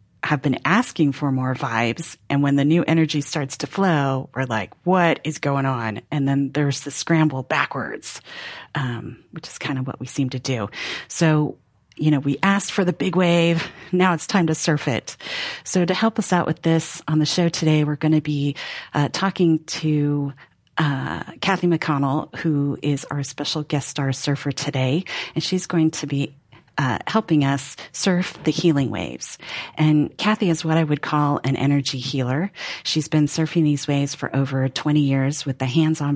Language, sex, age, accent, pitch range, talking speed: English, female, 40-59, American, 135-160 Hz, 190 wpm